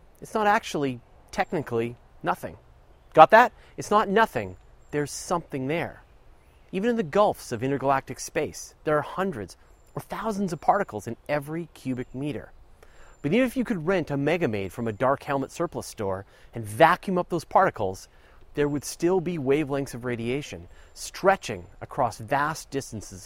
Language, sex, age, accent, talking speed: English, male, 40-59, American, 155 wpm